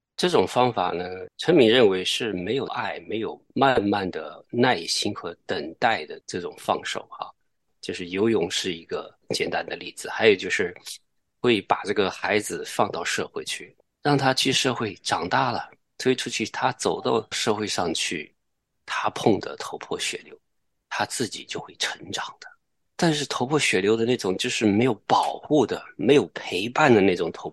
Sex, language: male, Chinese